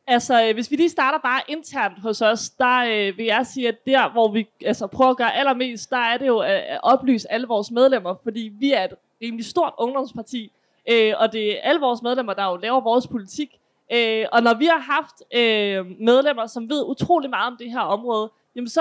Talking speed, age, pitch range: 220 wpm, 20-39, 225-275 Hz